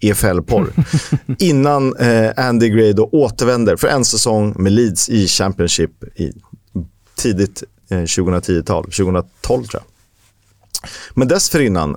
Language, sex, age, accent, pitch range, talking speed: Swedish, male, 30-49, native, 100-125 Hz, 115 wpm